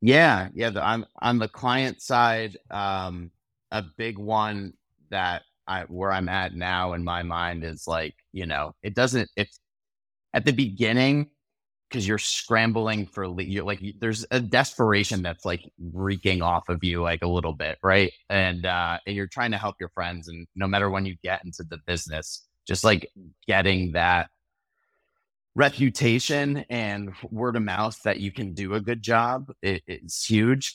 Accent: American